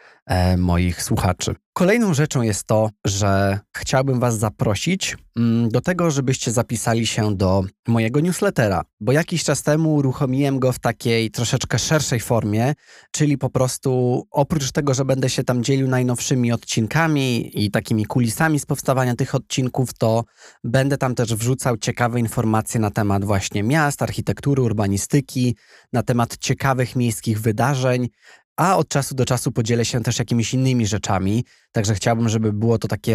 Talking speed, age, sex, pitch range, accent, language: 150 wpm, 20-39, male, 110-130 Hz, native, Polish